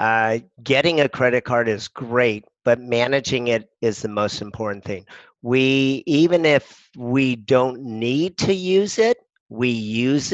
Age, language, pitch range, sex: 50-69, English, 110-130 Hz, male